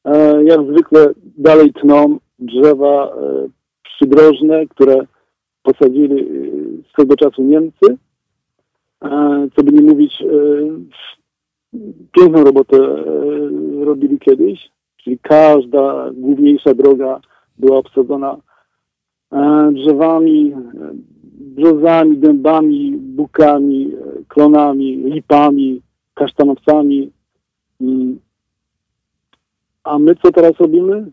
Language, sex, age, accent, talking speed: Polish, male, 50-69, native, 75 wpm